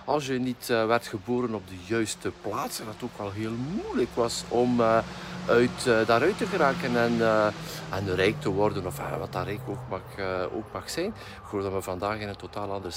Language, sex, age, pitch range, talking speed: Dutch, male, 50-69, 95-125 Hz, 210 wpm